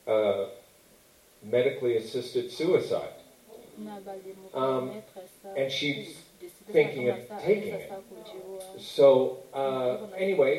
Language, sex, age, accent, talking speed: English, male, 40-59, American, 80 wpm